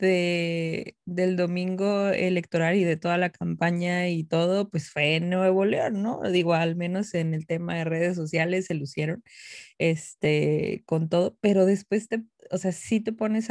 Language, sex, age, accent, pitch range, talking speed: Spanish, female, 20-39, Mexican, 170-200 Hz, 175 wpm